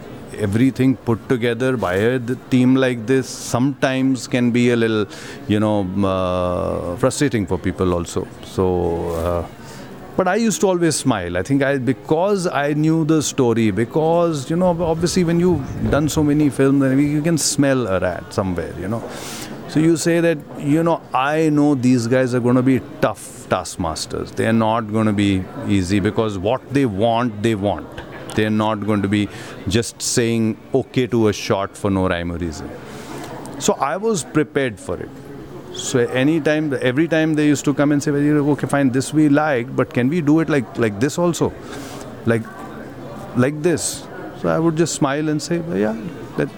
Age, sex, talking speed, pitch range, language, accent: 30-49, male, 185 wpm, 110-150 Hz, English, Indian